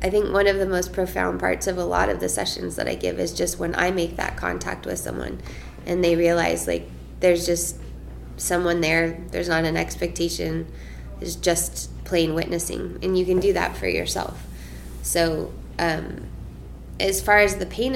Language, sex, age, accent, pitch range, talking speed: English, female, 20-39, American, 160-200 Hz, 185 wpm